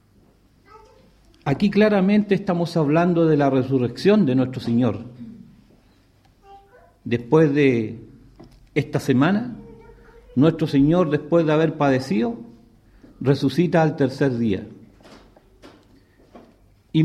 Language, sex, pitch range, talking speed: English, male, 130-190 Hz, 90 wpm